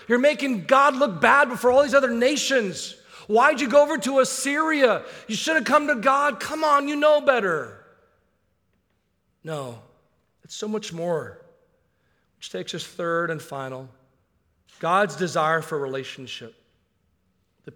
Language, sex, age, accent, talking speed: English, male, 40-59, American, 145 wpm